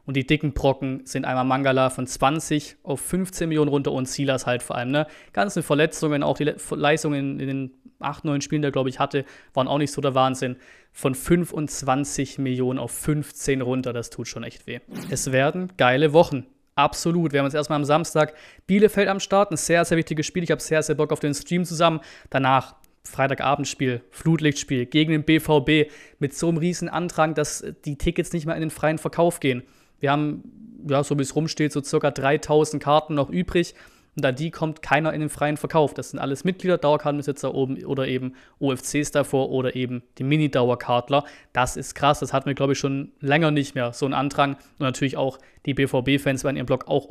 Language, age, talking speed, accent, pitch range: German, 20-39, 205 wpm, German, 135-155 Hz